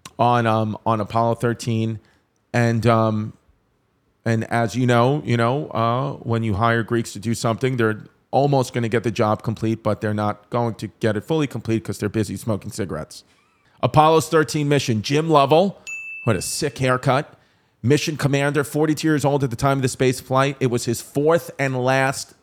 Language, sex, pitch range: English, male, 120-150 Hz